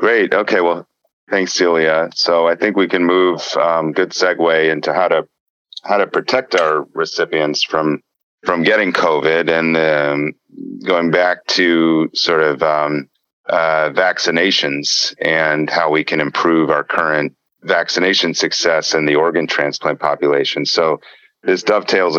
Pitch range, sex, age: 75-85 Hz, male, 40-59